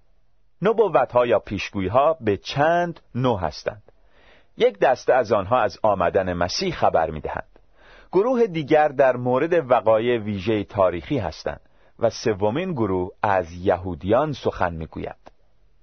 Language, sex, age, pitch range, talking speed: Persian, male, 40-59, 95-145 Hz, 120 wpm